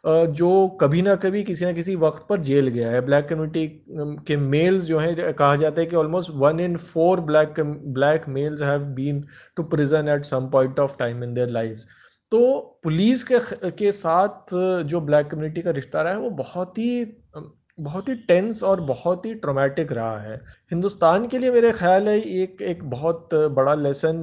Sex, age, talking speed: male, 30-49, 190 wpm